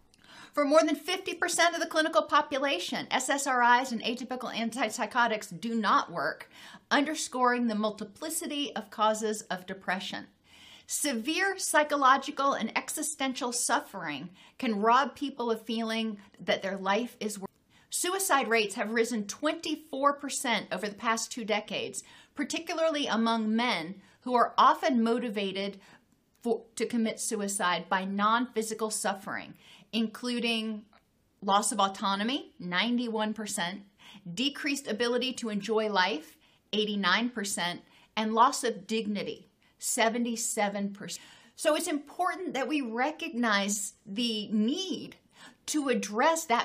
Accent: American